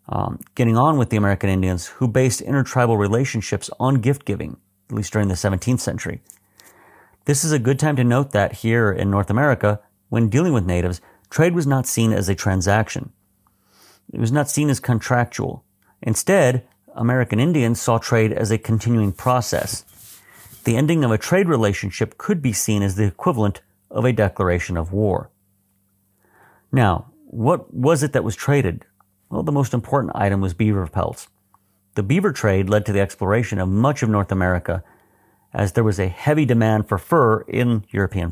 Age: 40-59